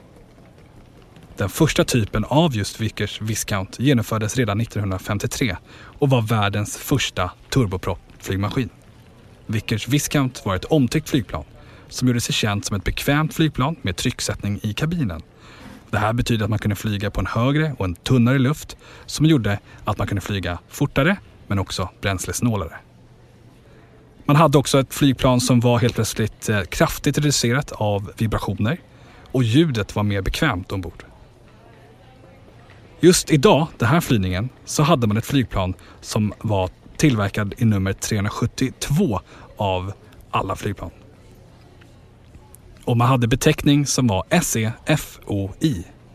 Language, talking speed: Swedish, 135 wpm